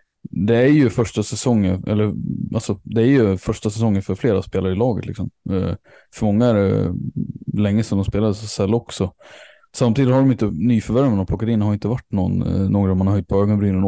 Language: Swedish